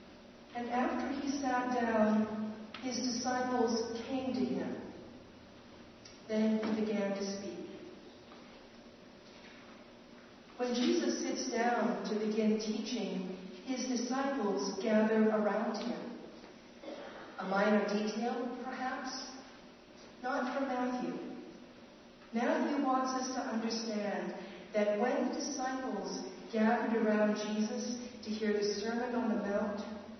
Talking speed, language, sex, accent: 105 wpm, English, female, American